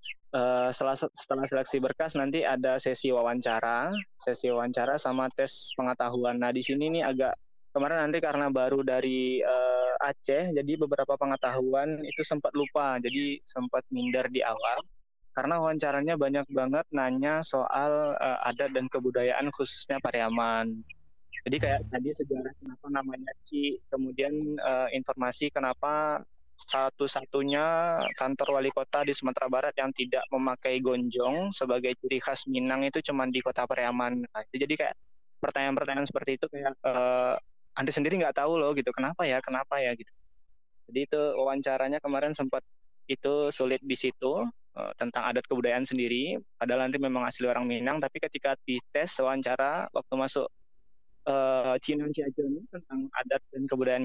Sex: male